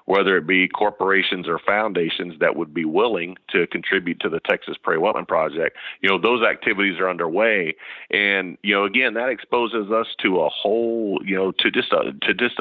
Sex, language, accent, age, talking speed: male, English, American, 40-59, 195 wpm